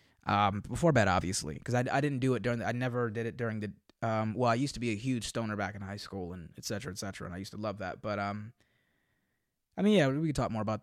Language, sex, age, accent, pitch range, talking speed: English, male, 20-39, American, 110-135 Hz, 285 wpm